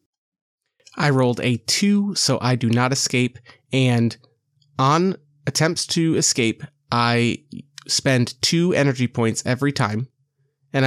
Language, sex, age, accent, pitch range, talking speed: English, male, 30-49, American, 120-140 Hz, 120 wpm